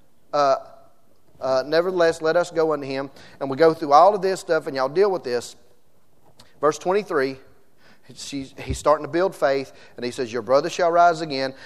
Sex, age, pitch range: male, 30-49, 155-205 Hz